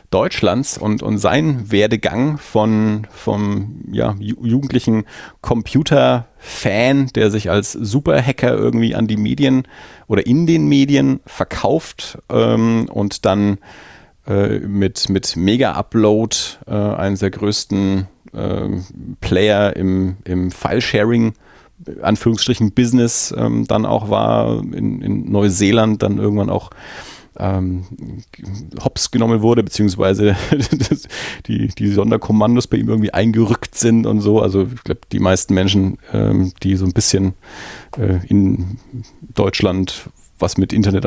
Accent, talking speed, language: German, 125 wpm, German